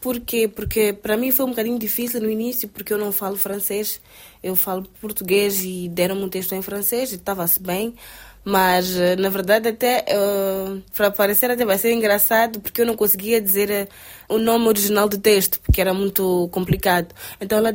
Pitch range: 195-230 Hz